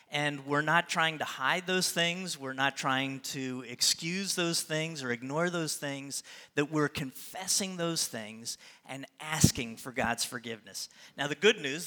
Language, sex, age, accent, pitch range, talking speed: English, male, 40-59, American, 135-170 Hz, 165 wpm